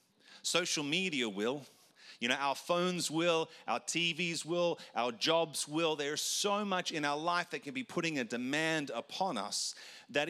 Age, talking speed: 40-59, 170 wpm